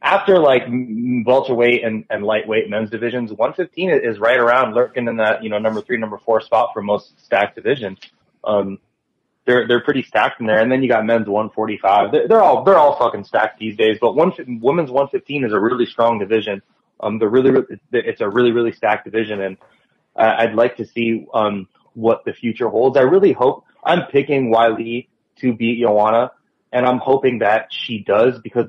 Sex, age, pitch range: male, 20-39, 105-125 Hz